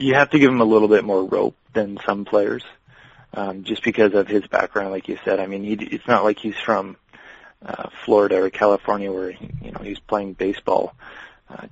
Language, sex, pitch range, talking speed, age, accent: English, male, 100-110 Hz, 215 wpm, 30-49, American